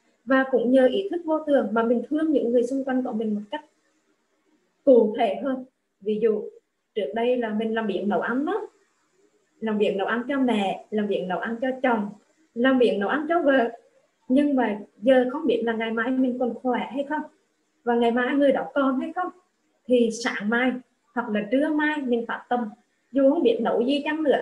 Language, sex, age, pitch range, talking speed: Vietnamese, female, 20-39, 230-305 Hz, 215 wpm